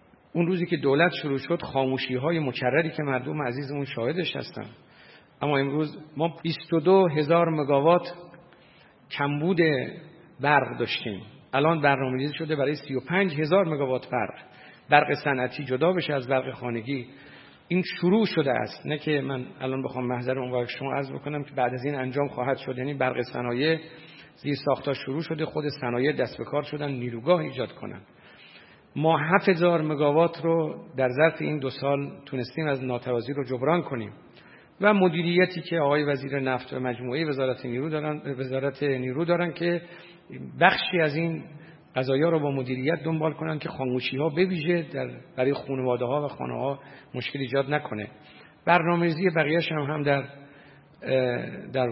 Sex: male